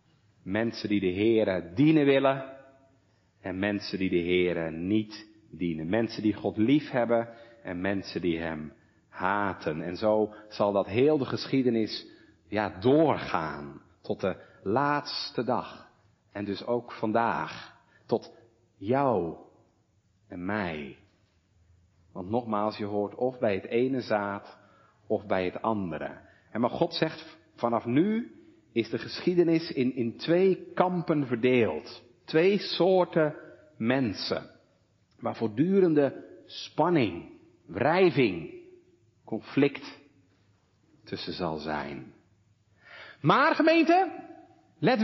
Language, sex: Dutch, male